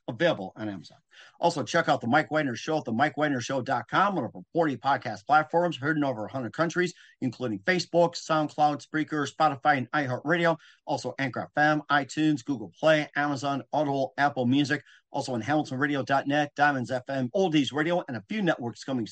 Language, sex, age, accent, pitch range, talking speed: English, male, 40-59, American, 135-160 Hz, 165 wpm